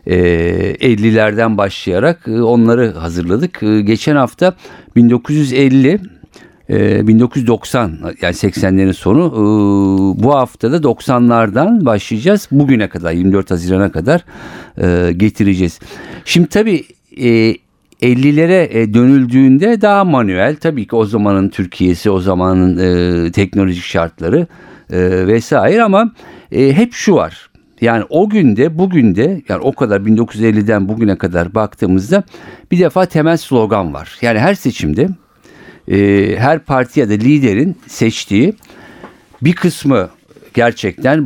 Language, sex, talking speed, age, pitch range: Turkish, male, 100 wpm, 50-69, 95-145 Hz